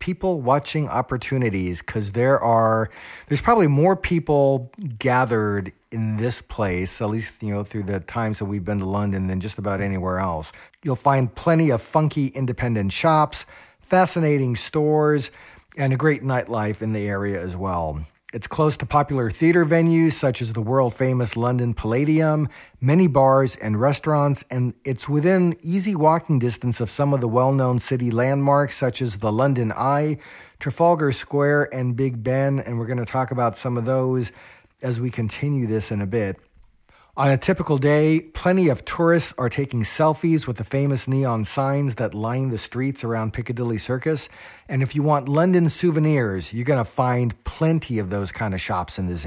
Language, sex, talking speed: English, male, 175 wpm